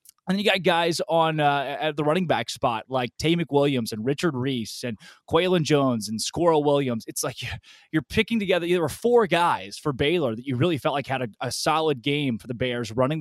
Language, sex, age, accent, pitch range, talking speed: English, male, 20-39, American, 130-175 Hz, 220 wpm